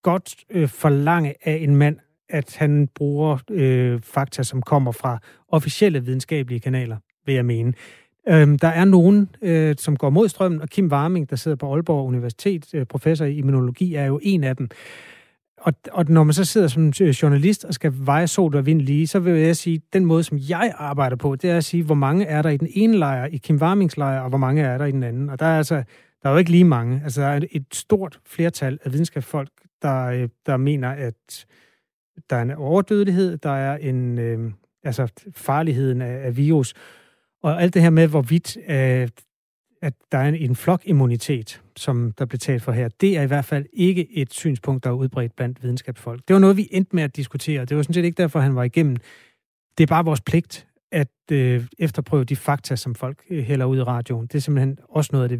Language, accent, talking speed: Danish, native, 220 wpm